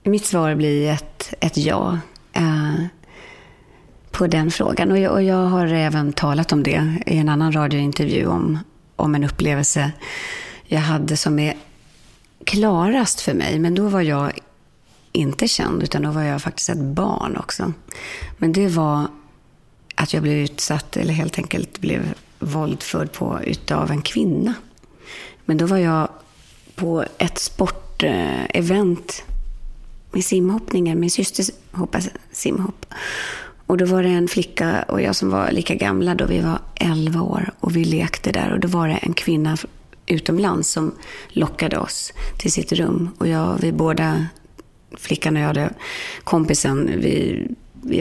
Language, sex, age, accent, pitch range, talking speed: English, female, 30-49, Swedish, 150-190 Hz, 150 wpm